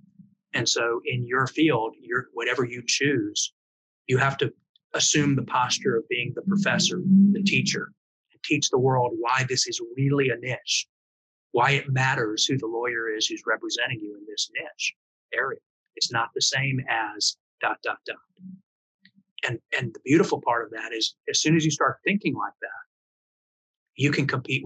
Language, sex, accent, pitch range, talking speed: English, male, American, 130-195 Hz, 175 wpm